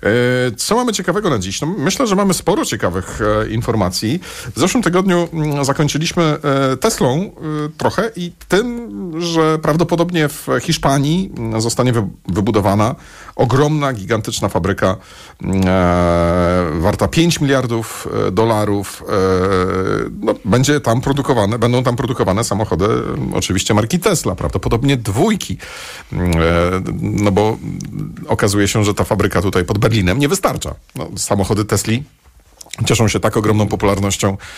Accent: native